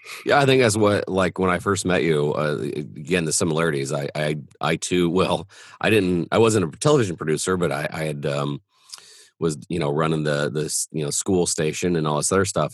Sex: male